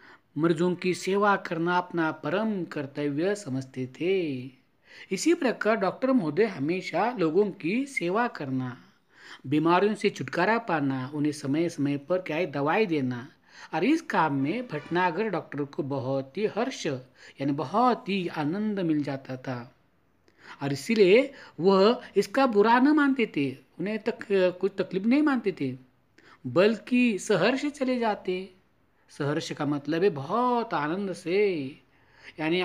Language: Marathi